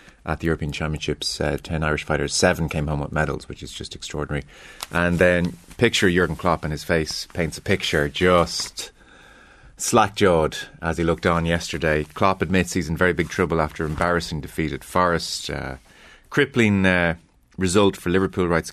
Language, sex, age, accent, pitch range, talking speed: English, male, 30-49, Irish, 75-95 Hz, 175 wpm